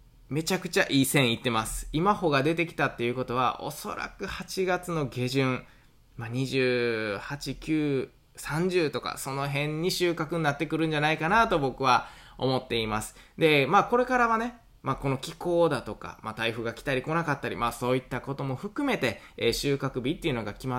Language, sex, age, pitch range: Japanese, male, 20-39, 115-165 Hz